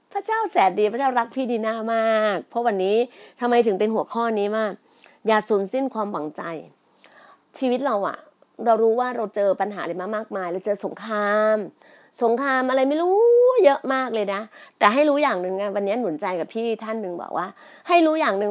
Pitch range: 210-270 Hz